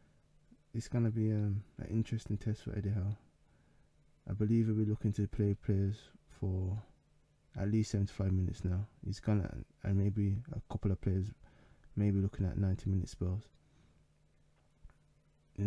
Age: 20-39